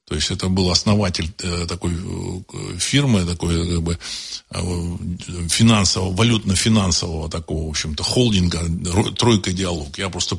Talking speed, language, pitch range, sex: 110 wpm, Russian, 85-110 Hz, male